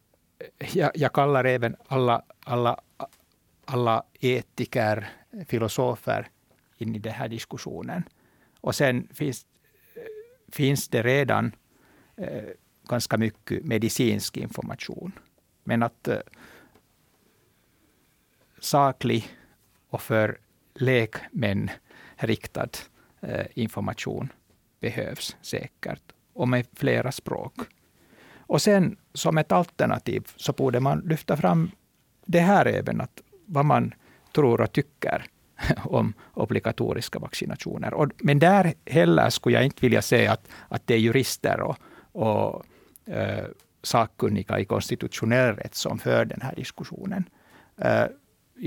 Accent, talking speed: Finnish, 110 wpm